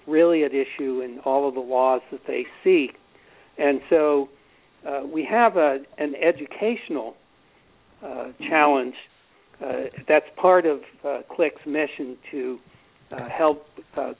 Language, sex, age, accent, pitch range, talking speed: English, male, 60-79, American, 135-155 Hz, 135 wpm